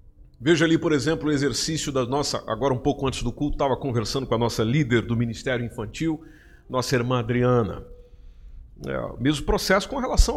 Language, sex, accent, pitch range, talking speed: Portuguese, male, Brazilian, 130-215 Hz, 175 wpm